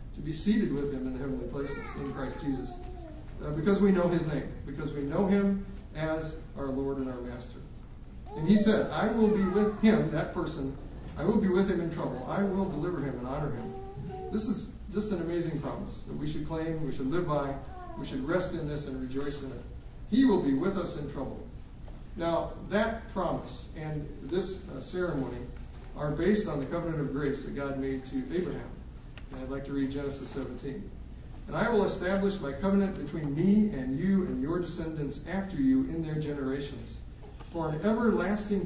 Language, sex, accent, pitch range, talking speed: English, male, American, 135-180 Hz, 200 wpm